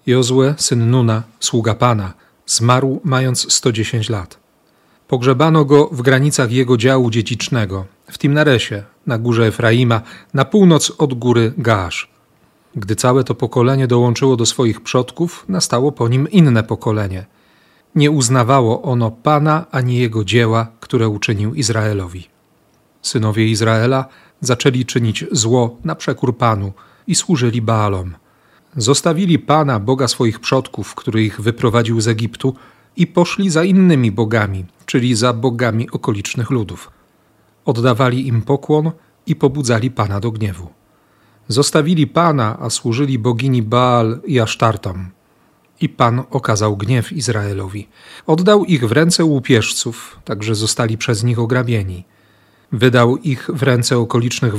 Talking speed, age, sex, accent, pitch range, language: 130 wpm, 40-59, male, native, 115-140 Hz, Polish